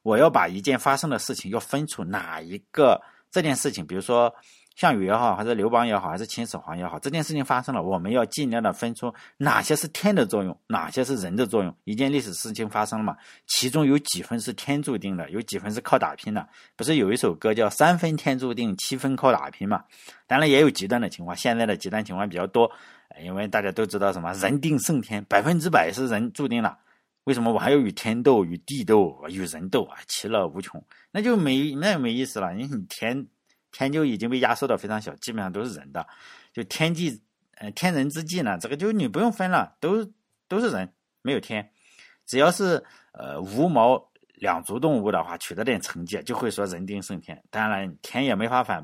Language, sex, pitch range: Chinese, male, 105-145 Hz